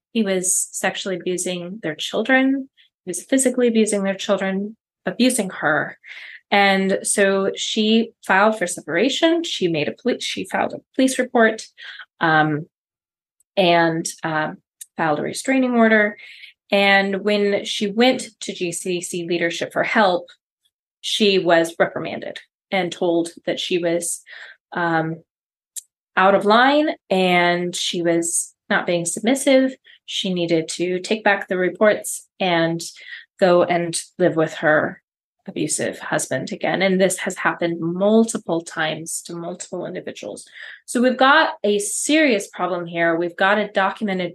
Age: 20-39